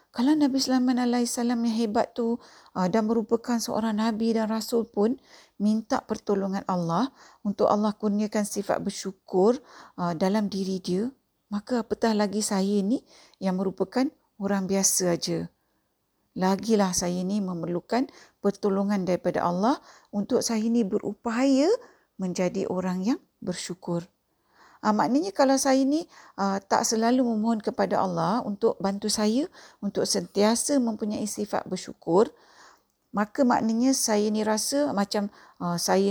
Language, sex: Malay, female